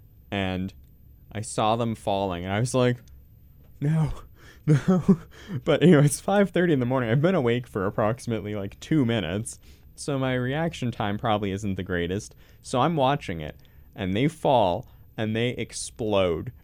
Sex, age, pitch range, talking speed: male, 20-39, 95-120 Hz, 160 wpm